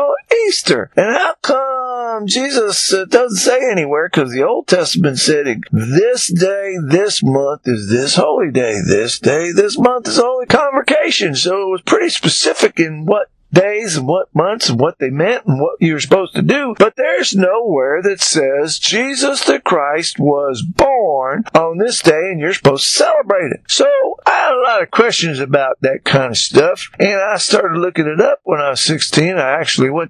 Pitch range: 155-255 Hz